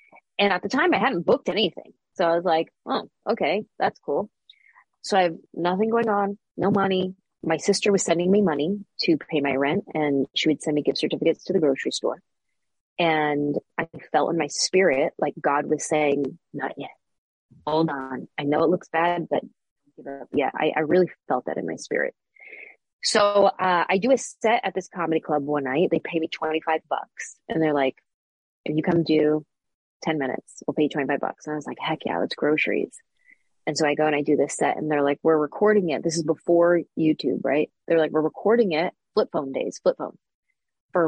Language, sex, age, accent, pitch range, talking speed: English, female, 30-49, American, 155-205 Hz, 215 wpm